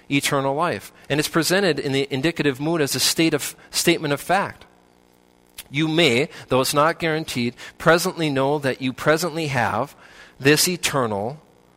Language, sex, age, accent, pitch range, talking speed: English, male, 40-59, American, 135-175 Hz, 155 wpm